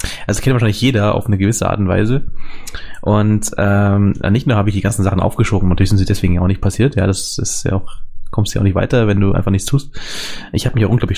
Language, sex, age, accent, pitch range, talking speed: German, male, 20-39, German, 95-115 Hz, 260 wpm